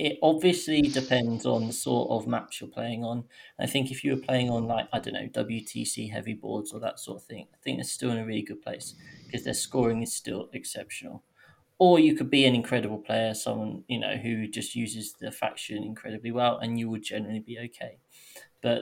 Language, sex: English, male